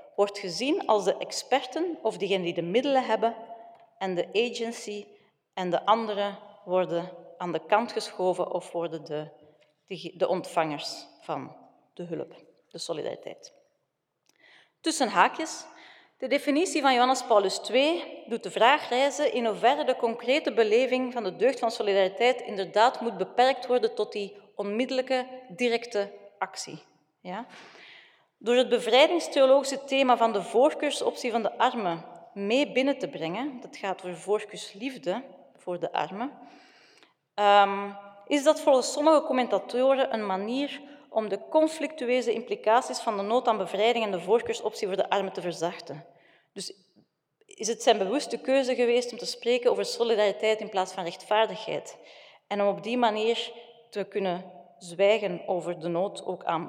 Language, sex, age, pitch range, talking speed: Dutch, female, 40-59, 195-260 Hz, 145 wpm